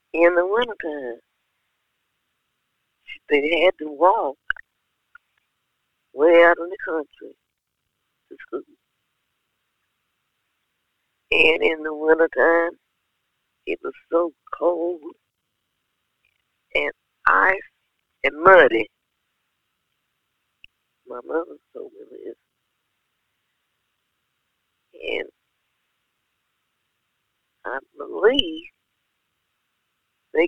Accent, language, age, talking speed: American, English, 50-69, 65 wpm